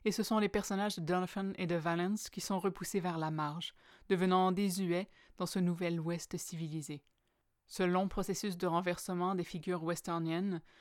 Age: 20-39